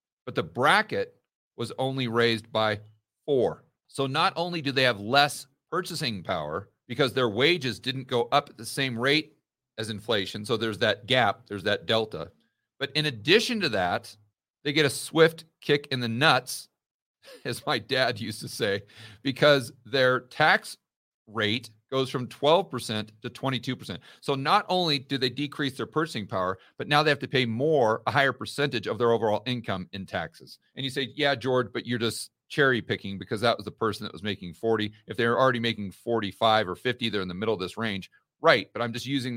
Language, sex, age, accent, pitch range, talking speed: English, male, 40-59, American, 110-140 Hz, 195 wpm